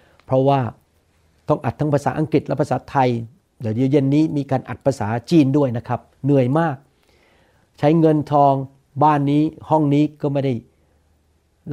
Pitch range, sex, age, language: 125-175 Hz, male, 60-79, Thai